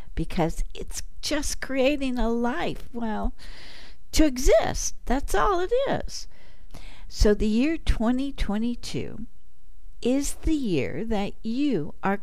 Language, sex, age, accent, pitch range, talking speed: English, female, 60-79, American, 175-240 Hz, 115 wpm